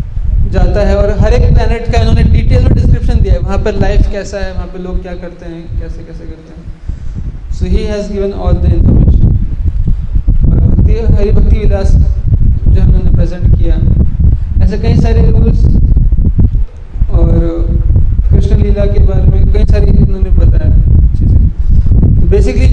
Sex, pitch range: male, 80-100 Hz